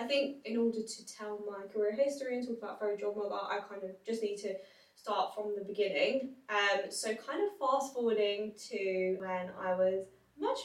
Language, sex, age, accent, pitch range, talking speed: English, female, 10-29, British, 195-230 Hz, 205 wpm